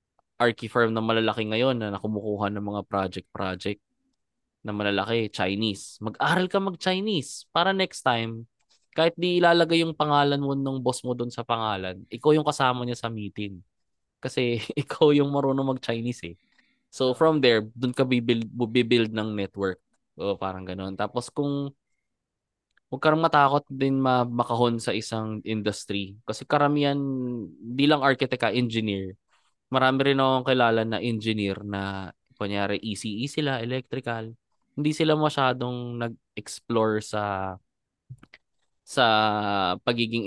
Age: 20-39